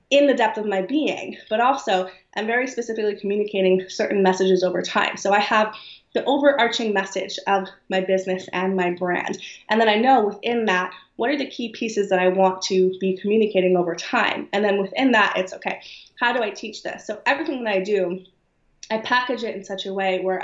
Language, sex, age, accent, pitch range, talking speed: English, female, 20-39, American, 190-260 Hz, 210 wpm